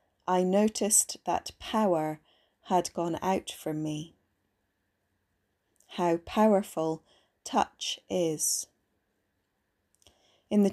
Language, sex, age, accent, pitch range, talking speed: English, female, 30-49, British, 165-205 Hz, 85 wpm